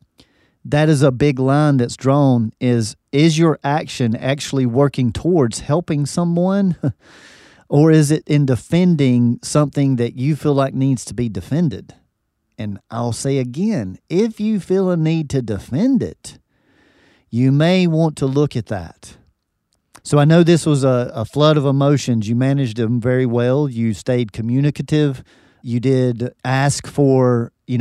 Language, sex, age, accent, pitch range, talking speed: English, male, 40-59, American, 120-145 Hz, 155 wpm